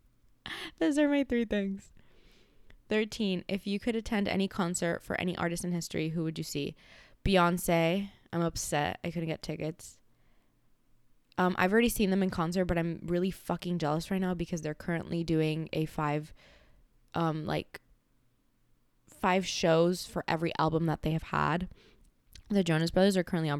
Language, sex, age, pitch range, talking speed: English, female, 20-39, 155-185 Hz, 165 wpm